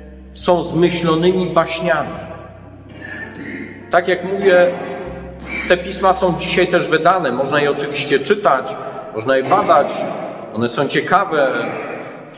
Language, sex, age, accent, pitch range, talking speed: Polish, male, 40-59, native, 160-195 Hz, 110 wpm